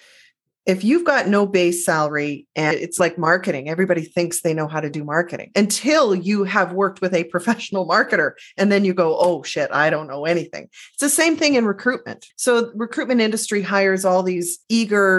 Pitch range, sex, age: 175-220 Hz, female, 30-49